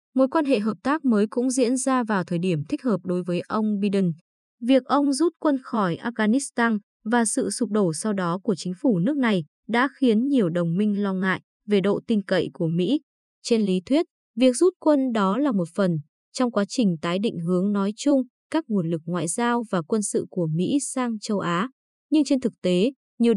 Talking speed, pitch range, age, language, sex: 215 wpm, 190-255 Hz, 20-39, Vietnamese, female